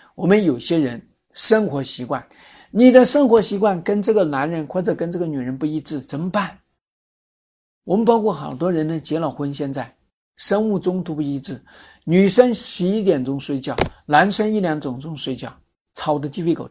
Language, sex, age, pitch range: Chinese, male, 50-69, 145-205 Hz